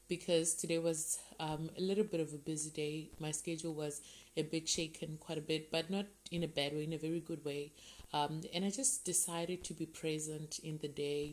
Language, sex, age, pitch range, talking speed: English, female, 20-39, 155-170 Hz, 220 wpm